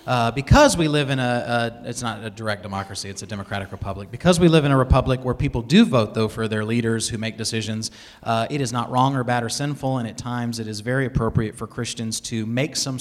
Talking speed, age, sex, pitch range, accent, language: 250 wpm, 30-49, male, 115-145 Hz, American, English